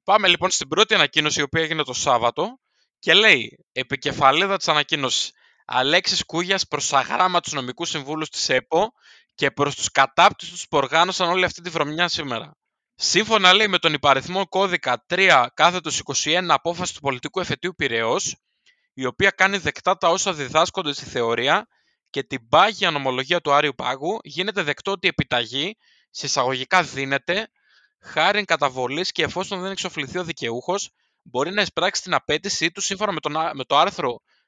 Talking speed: 150 wpm